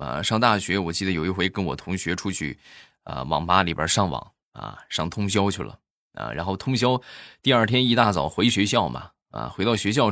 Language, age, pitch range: Chinese, 20-39, 95-130 Hz